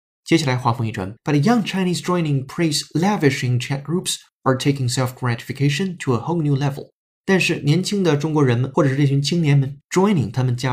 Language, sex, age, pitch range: Chinese, male, 20-39, 120-160 Hz